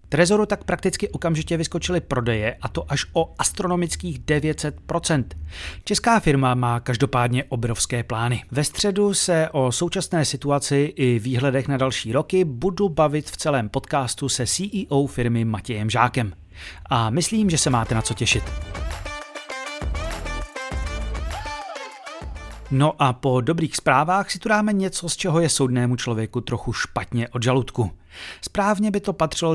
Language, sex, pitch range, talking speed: Czech, male, 120-170 Hz, 140 wpm